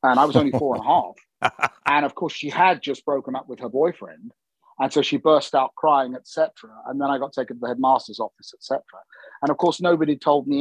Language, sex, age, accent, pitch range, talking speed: English, male, 40-59, British, 125-155 Hz, 250 wpm